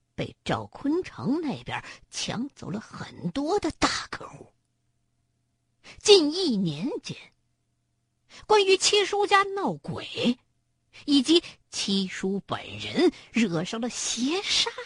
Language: Chinese